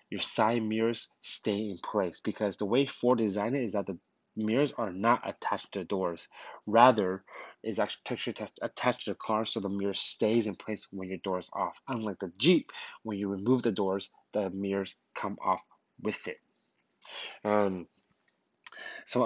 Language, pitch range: English, 100-125 Hz